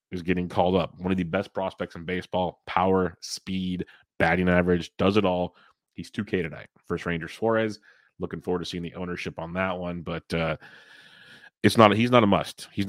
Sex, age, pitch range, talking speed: male, 30-49, 90-100 Hz, 200 wpm